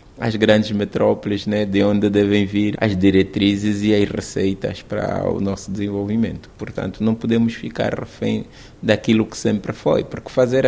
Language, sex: Portuguese, male